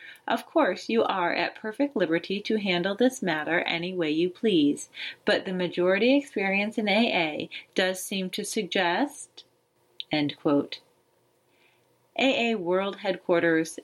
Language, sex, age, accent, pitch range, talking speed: English, female, 30-49, American, 175-230 Hz, 120 wpm